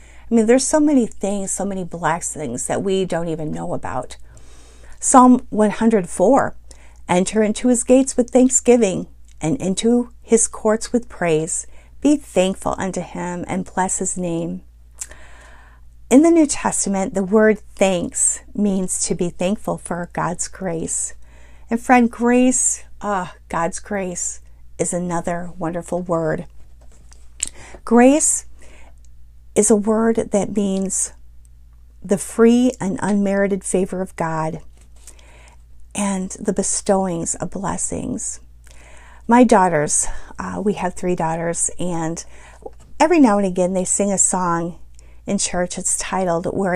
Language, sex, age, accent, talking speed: English, female, 50-69, American, 130 wpm